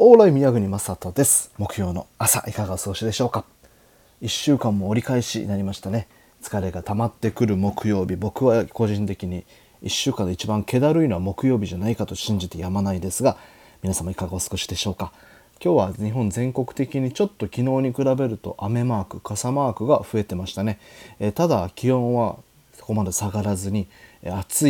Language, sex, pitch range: Japanese, male, 95-120 Hz